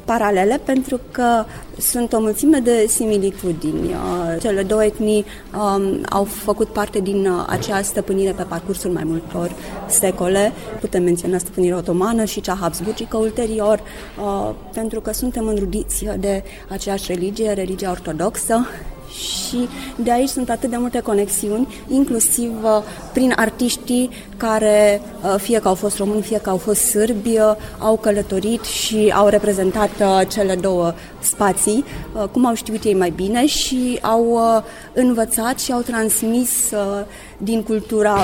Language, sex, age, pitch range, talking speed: Romanian, female, 20-39, 195-230 Hz, 130 wpm